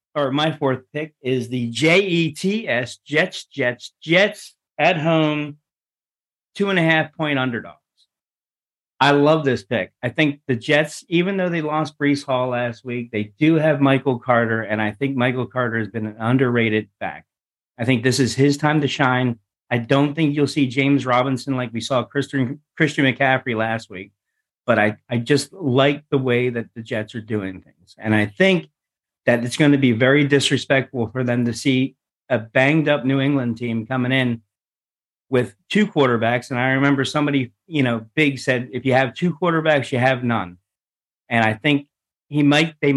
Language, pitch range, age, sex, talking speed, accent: English, 120-150 Hz, 40-59, male, 190 wpm, American